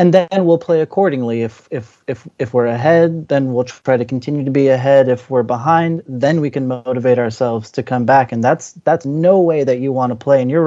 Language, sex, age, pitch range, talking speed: English, male, 30-49, 125-155 Hz, 235 wpm